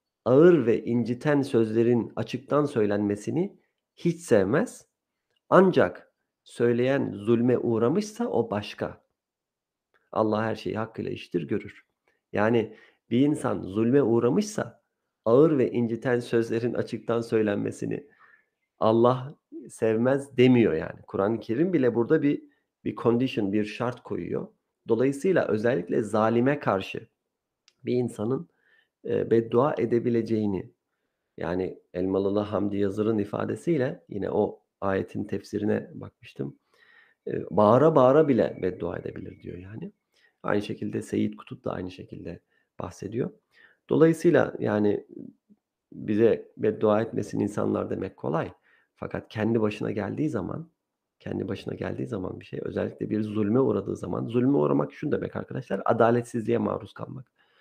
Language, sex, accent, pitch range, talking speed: Turkish, male, native, 105-140 Hz, 115 wpm